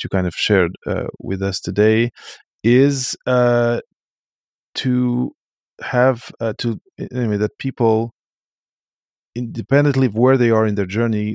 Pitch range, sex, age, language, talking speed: 105-125 Hz, male, 30-49, English, 130 wpm